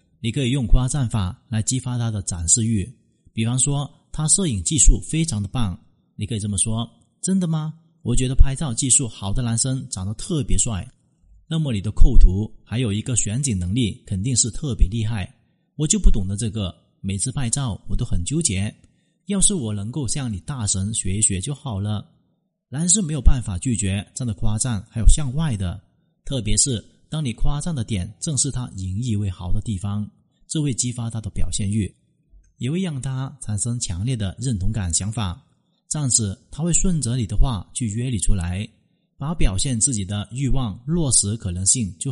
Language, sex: Chinese, male